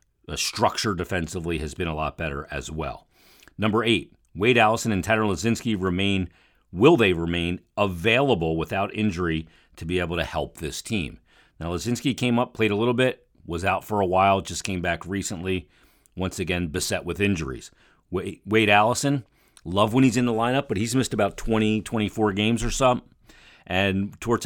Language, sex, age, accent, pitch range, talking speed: English, male, 40-59, American, 85-105 Hz, 175 wpm